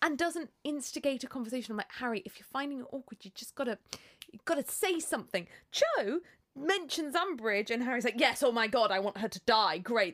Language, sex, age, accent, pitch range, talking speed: English, female, 20-39, British, 230-355 Hz, 220 wpm